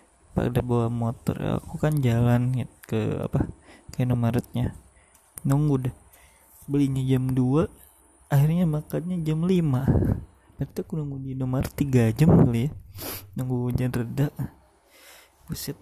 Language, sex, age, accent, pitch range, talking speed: Indonesian, male, 20-39, native, 120-145 Hz, 125 wpm